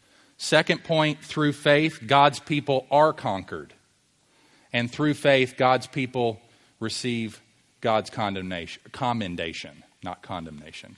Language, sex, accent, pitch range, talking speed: English, male, American, 120-175 Hz, 105 wpm